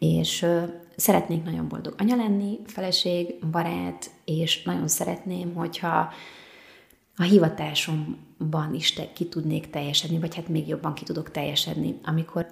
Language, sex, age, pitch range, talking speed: Hungarian, female, 30-49, 160-195 Hz, 130 wpm